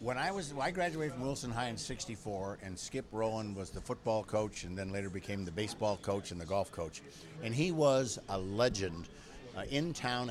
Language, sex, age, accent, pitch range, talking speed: English, male, 50-69, American, 105-135 Hz, 210 wpm